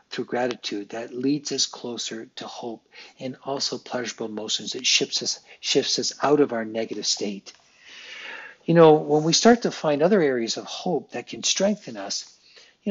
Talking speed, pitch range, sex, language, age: 175 wpm, 115-145 Hz, male, English, 50-69